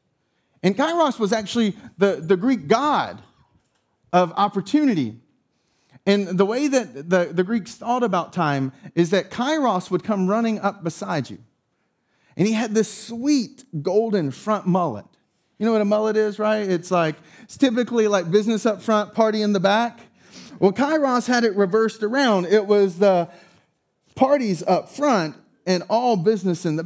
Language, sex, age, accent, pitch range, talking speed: English, male, 30-49, American, 195-250 Hz, 165 wpm